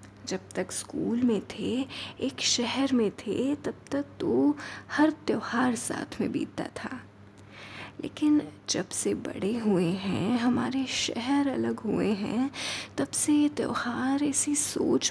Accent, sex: native, female